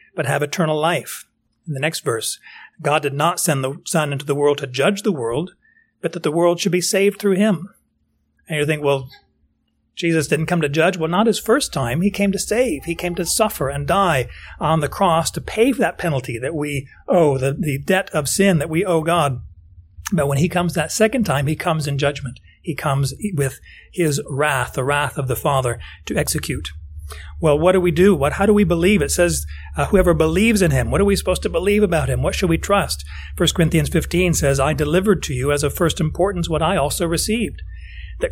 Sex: male